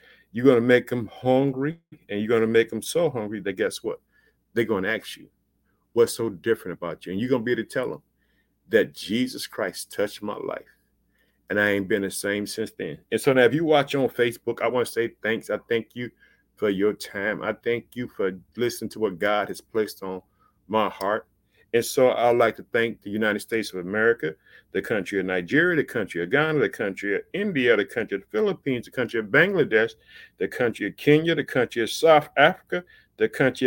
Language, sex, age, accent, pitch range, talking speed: English, male, 50-69, American, 110-130 Hz, 225 wpm